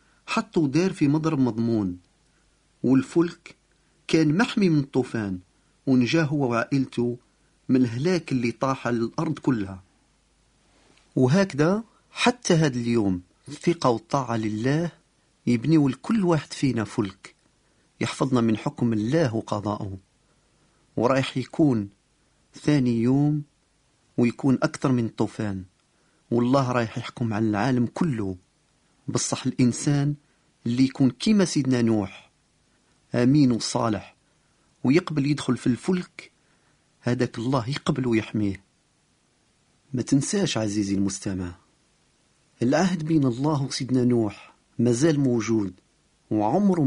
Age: 40-59